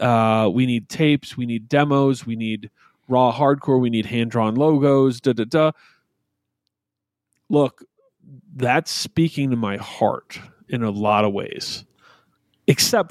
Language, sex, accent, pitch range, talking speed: English, male, American, 110-140 Hz, 140 wpm